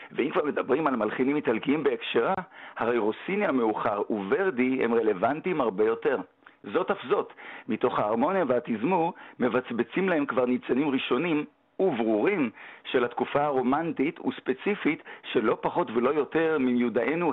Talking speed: 130 wpm